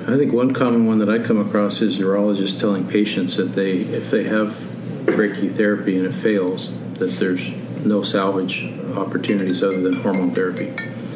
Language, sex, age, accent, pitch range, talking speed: English, male, 50-69, American, 95-110 Hz, 165 wpm